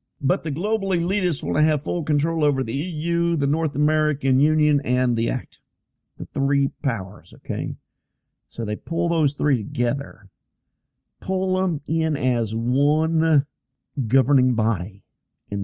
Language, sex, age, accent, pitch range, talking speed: English, male, 50-69, American, 125-180 Hz, 140 wpm